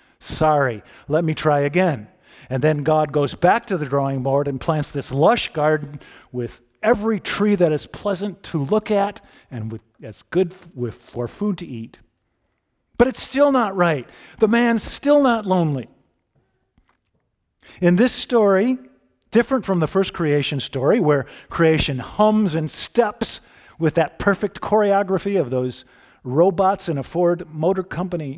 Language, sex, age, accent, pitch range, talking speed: English, male, 50-69, American, 140-205 Hz, 150 wpm